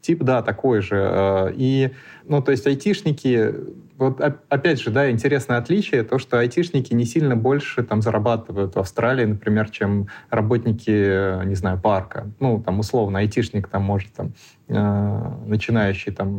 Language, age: Russian, 20-39